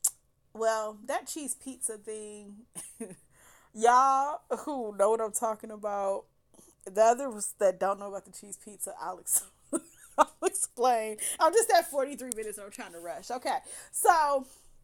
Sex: female